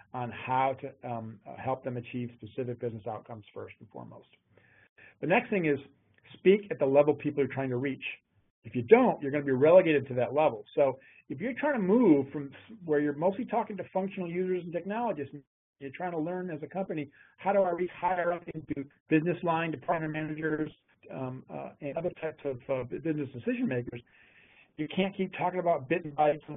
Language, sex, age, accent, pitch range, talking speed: English, male, 40-59, American, 125-160 Hz, 205 wpm